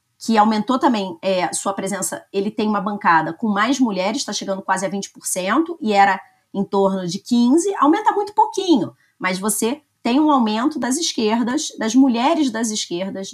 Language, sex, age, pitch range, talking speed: Portuguese, female, 30-49, 205-300 Hz, 165 wpm